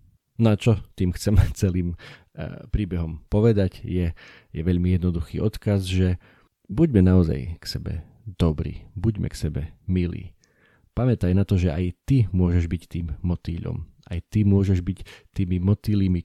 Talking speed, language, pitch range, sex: 140 wpm, Slovak, 90-100 Hz, male